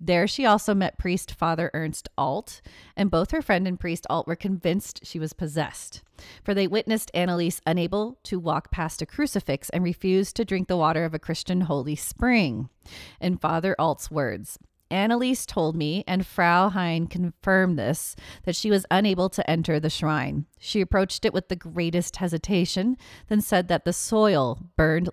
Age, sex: 30-49, female